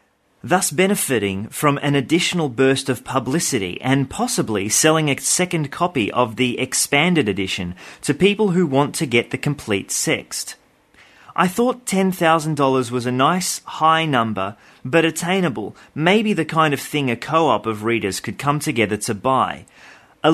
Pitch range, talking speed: 115-160 Hz, 155 wpm